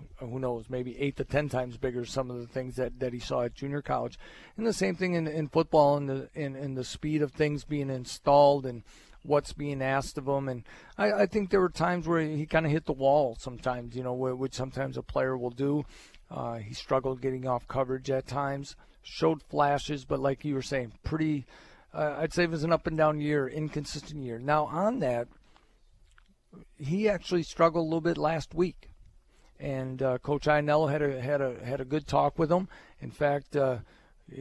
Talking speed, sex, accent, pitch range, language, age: 210 wpm, male, American, 130-155 Hz, English, 40-59